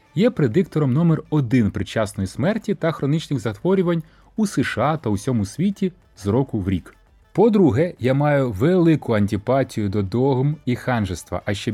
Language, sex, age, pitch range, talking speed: Ukrainian, male, 30-49, 100-155 Hz, 150 wpm